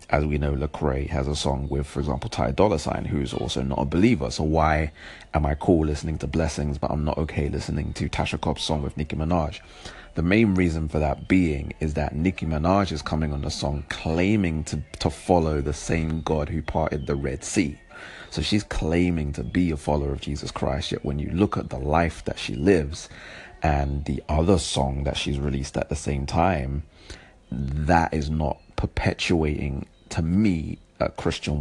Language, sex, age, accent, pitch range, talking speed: English, male, 30-49, British, 75-85 Hz, 200 wpm